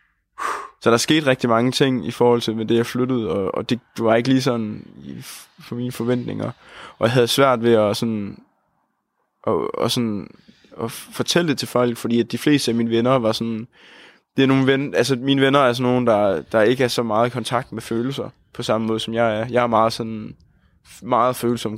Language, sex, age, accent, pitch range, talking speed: Danish, male, 20-39, native, 115-130 Hz, 205 wpm